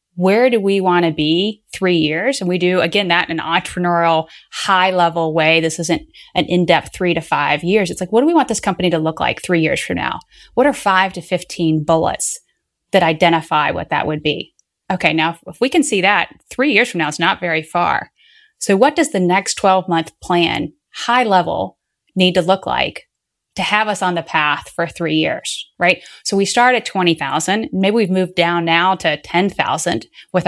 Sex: female